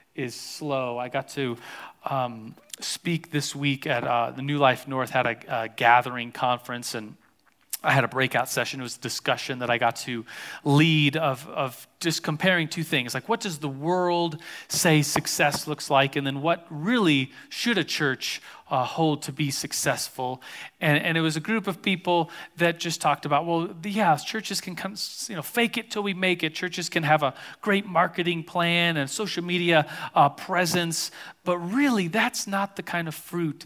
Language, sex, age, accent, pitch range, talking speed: English, male, 40-59, American, 135-170 Hz, 195 wpm